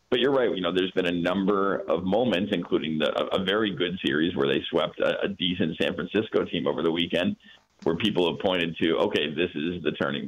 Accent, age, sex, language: American, 50-69, male, English